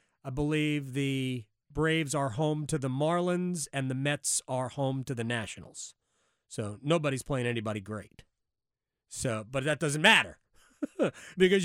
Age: 40-59